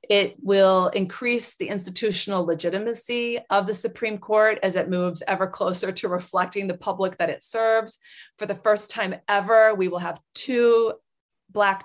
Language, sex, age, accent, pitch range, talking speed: English, female, 30-49, American, 180-215 Hz, 160 wpm